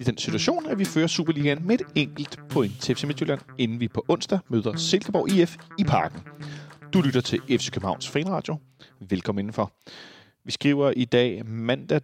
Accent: native